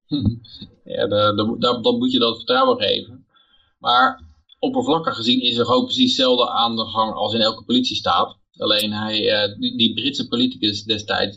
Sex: male